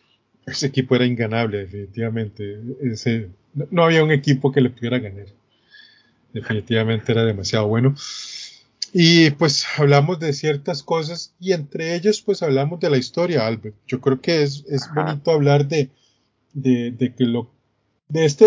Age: 30-49